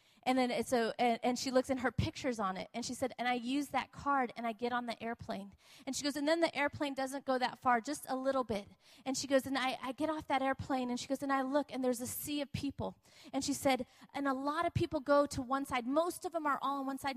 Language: Korean